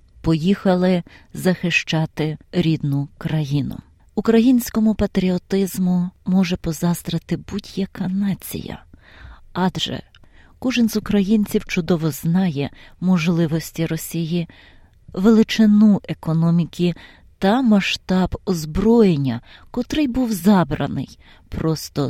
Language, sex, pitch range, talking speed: Ukrainian, female, 165-210 Hz, 75 wpm